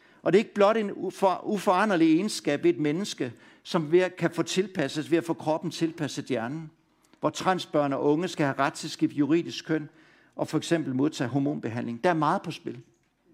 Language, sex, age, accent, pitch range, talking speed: Danish, male, 60-79, native, 165-235 Hz, 195 wpm